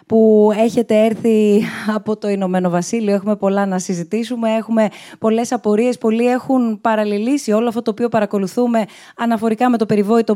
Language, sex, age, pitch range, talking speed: Greek, female, 20-39, 200-230 Hz, 150 wpm